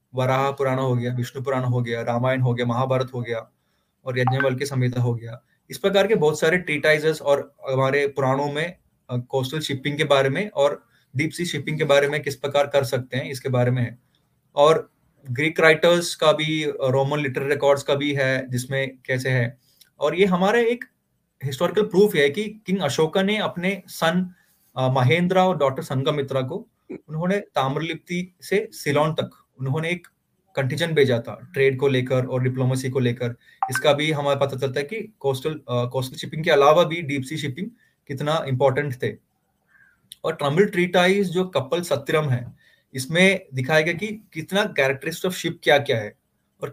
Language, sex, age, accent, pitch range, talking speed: English, male, 20-39, Indian, 130-170 Hz, 150 wpm